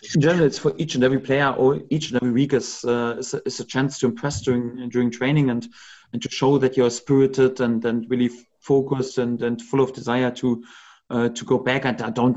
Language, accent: English, German